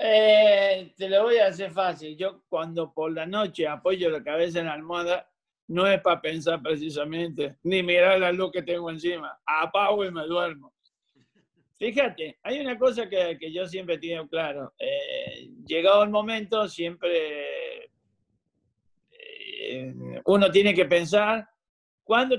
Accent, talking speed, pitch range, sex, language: Argentinian, 145 wpm, 160-215 Hz, male, Spanish